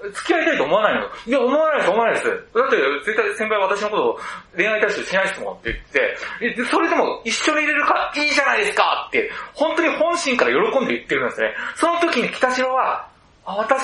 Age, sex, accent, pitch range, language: 30-49, male, native, 235-345 Hz, Japanese